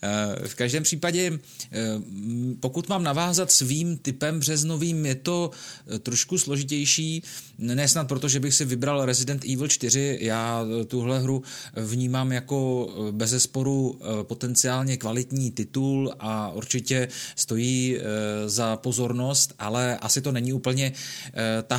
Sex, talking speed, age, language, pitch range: male, 115 wpm, 30-49, Czech, 120-140 Hz